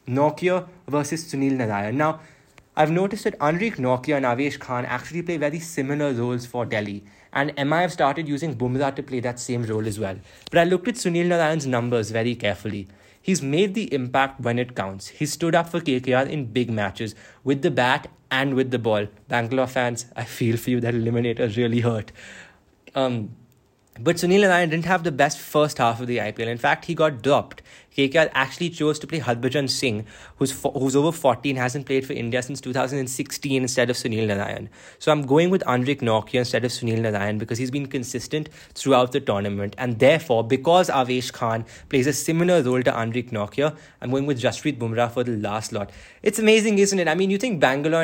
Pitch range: 120-160 Hz